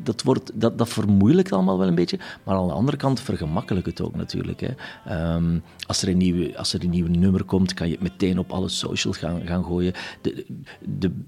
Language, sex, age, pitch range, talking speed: Dutch, male, 40-59, 85-105 Hz, 220 wpm